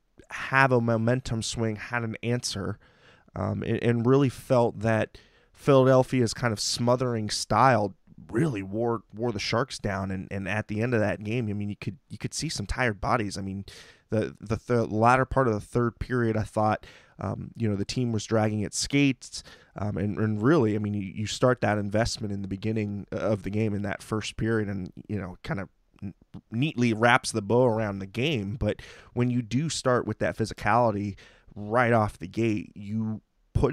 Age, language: 20-39, English